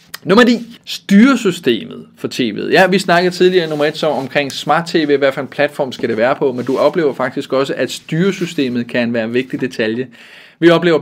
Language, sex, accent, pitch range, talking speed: Danish, male, native, 130-155 Hz, 195 wpm